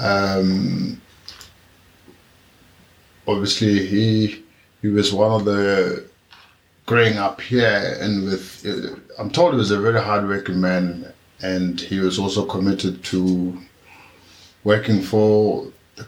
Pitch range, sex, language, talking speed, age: 90-105 Hz, male, English, 115 wpm, 50-69